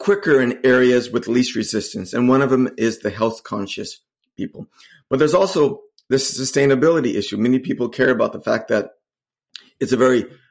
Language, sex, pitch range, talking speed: English, male, 110-135 Hz, 175 wpm